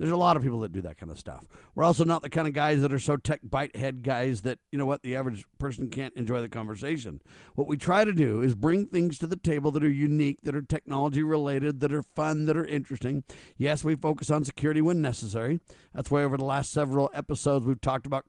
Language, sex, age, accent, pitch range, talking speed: English, male, 50-69, American, 130-165 Hz, 255 wpm